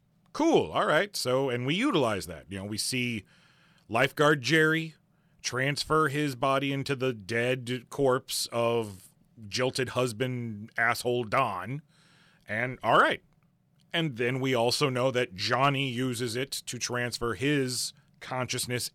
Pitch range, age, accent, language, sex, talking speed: 125-170 Hz, 30-49, American, English, male, 135 wpm